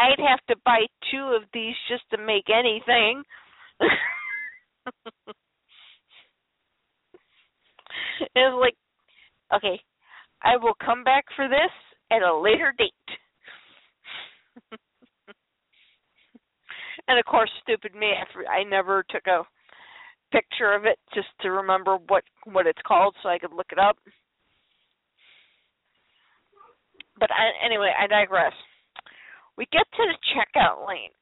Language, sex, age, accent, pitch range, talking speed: English, female, 40-59, American, 220-355 Hz, 115 wpm